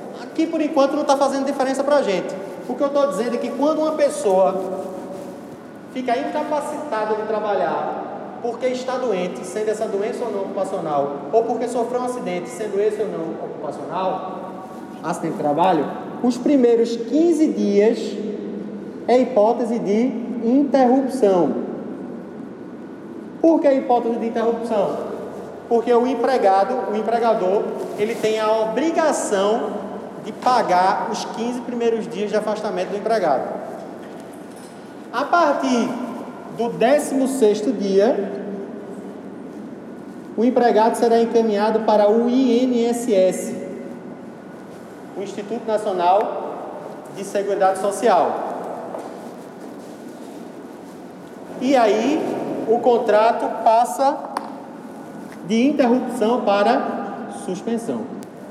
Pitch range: 210-255 Hz